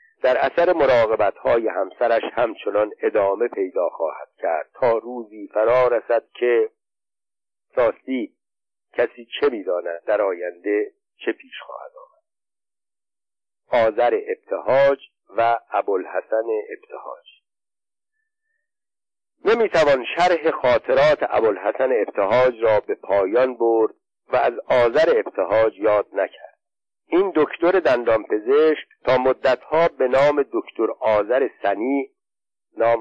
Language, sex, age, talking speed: Persian, male, 50-69, 105 wpm